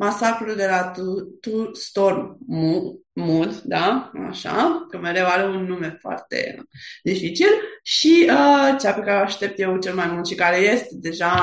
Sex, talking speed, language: female, 160 wpm, Romanian